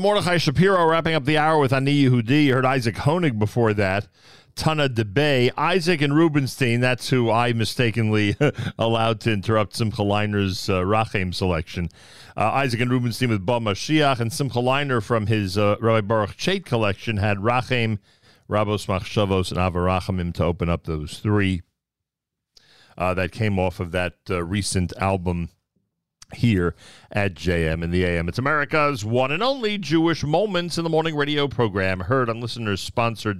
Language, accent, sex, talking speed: English, American, male, 160 wpm